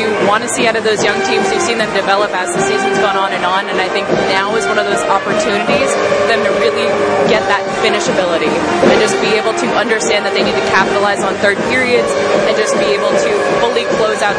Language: English